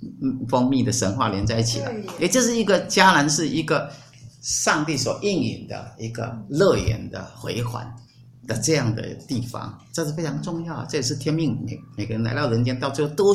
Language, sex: Chinese, male